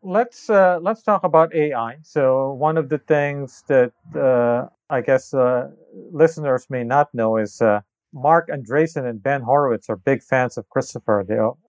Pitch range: 105-135 Hz